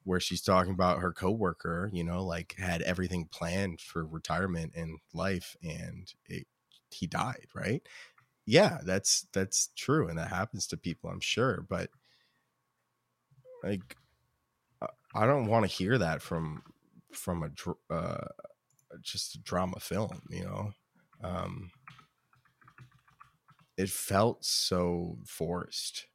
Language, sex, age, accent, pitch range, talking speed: English, male, 20-39, American, 85-115 Hz, 130 wpm